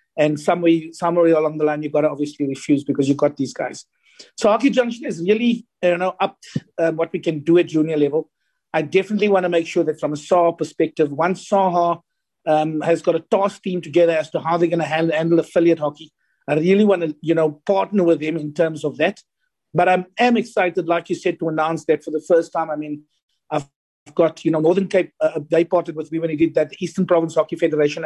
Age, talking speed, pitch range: 50-69, 235 wpm, 160-210 Hz